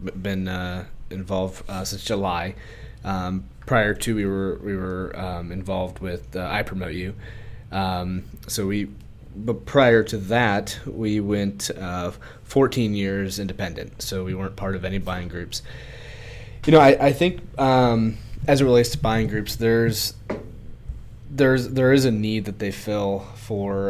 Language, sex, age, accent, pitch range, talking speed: English, male, 30-49, American, 95-115 Hz, 160 wpm